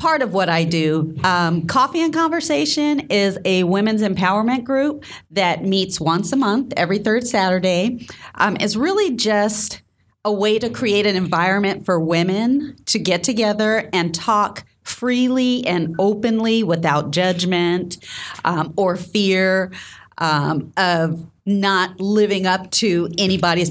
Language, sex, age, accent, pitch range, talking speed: English, female, 40-59, American, 175-215 Hz, 135 wpm